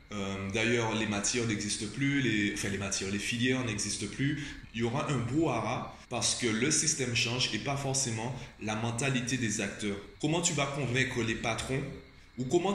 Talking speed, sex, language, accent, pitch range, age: 185 wpm, male, French, French, 110-135 Hz, 20-39